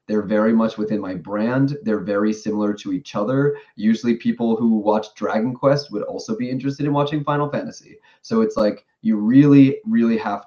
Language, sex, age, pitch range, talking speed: English, male, 30-49, 105-135 Hz, 190 wpm